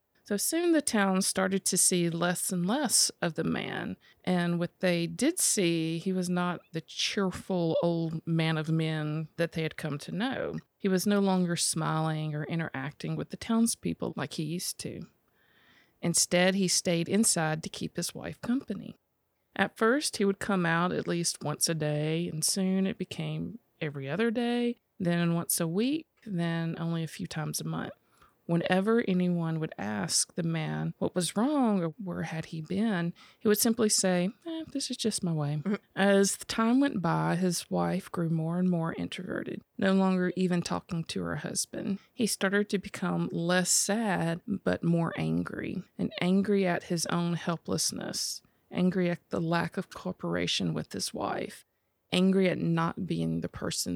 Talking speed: 175 wpm